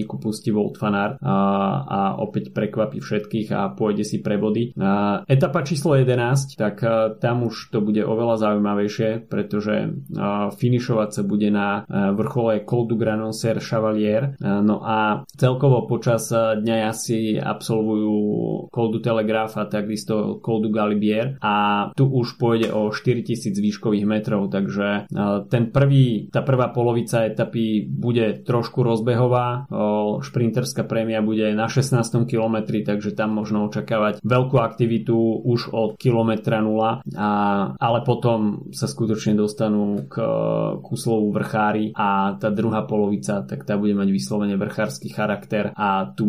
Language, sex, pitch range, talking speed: Slovak, male, 105-115 Hz, 130 wpm